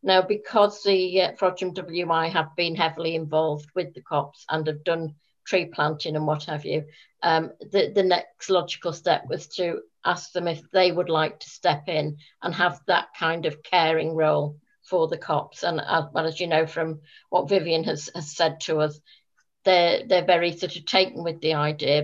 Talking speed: 195 wpm